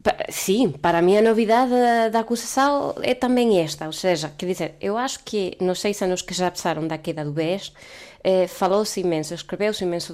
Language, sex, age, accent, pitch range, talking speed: Portuguese, female, 20-39, Spanish, 180-235 Hz, 195 wpm